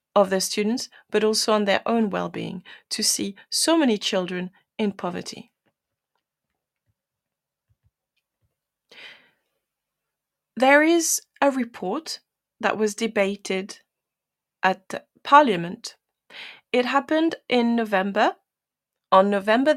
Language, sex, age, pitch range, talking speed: English, female, 30-49, 195-260 Hz, 100 wpm